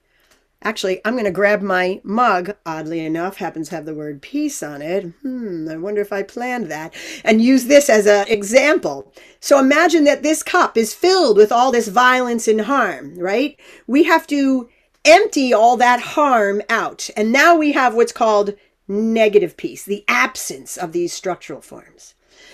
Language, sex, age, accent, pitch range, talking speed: English, female, 40-59, American, 220-310 Hz, 175 wpm